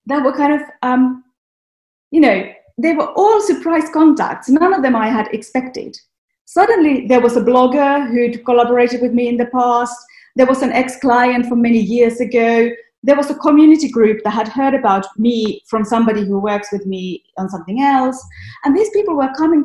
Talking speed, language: 190 wpm, English